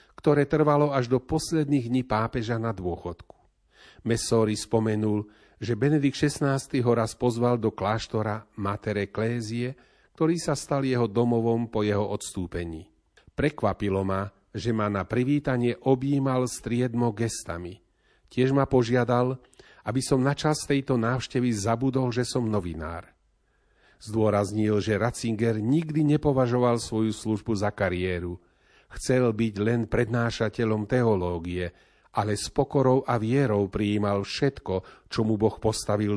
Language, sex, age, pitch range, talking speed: Slovak, male, 40-59, 105-130 Hz, 125 wpm